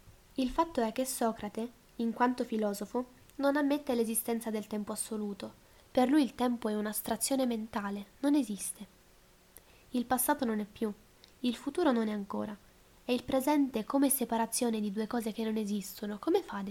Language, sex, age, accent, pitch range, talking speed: Italian, female, 10-29, native, 215-255 Hz, 170 wpm